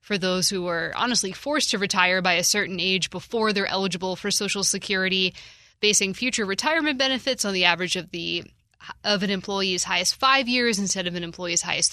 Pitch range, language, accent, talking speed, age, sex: 190-230 Hz, English, American, 185 wpm, 20-39, female